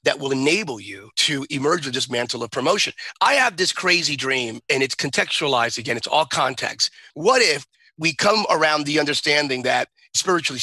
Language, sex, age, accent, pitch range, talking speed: English, male, 30-49, American, 145-195 Hz, 180 wpm